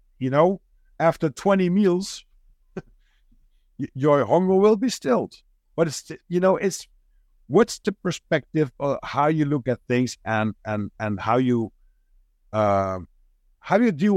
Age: 50-69